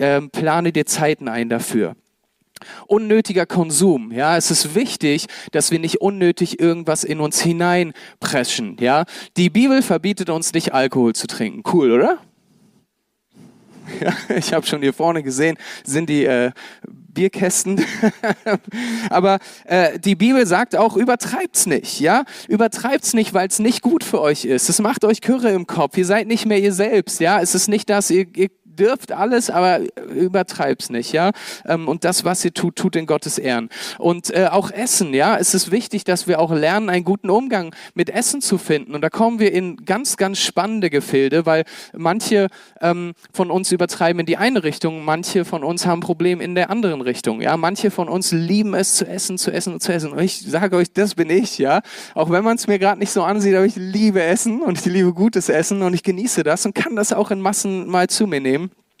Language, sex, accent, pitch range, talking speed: German, male, German, 165-210 Hz, 195 wpm